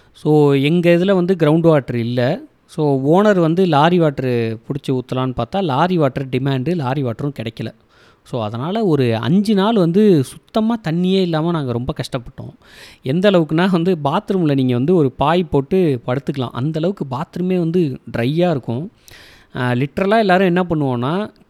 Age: 20-39